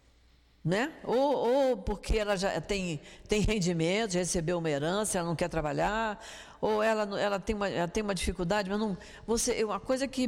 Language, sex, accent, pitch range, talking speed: Portuguese, female, Brazilian, 180-230 Hz, 185 wpm